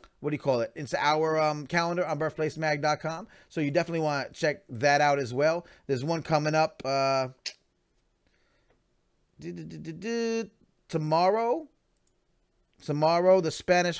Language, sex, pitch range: English, male, 150-195 Hz